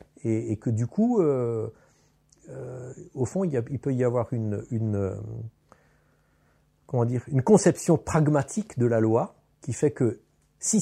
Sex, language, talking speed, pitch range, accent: male, French, 170 wpm, 110-150 Hz, French